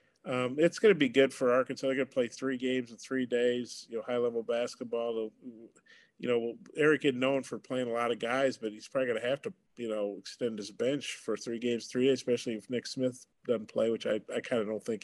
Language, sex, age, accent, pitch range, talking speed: English, male, 50-69, American, 110-125 Hz, 255 wpm